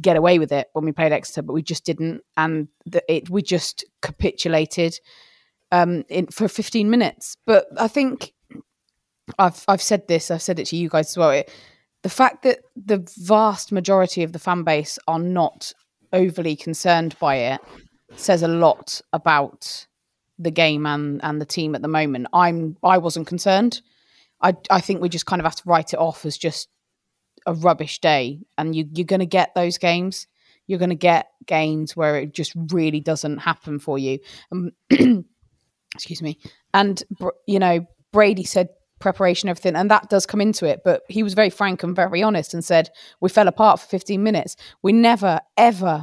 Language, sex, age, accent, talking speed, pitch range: English, female, 20-39, British, 190 wpm, 160-200 Hz